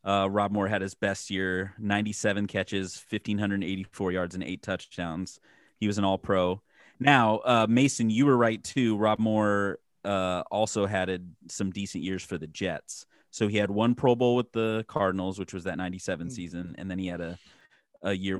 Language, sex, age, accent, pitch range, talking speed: English, male, 30-49, American, 95-120 Hz, 185 wpm